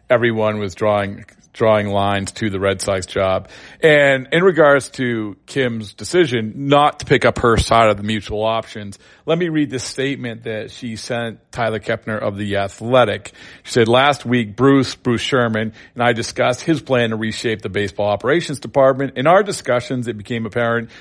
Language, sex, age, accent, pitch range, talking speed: English, male, 40-59, American, 110-135 Hz, 180 wpm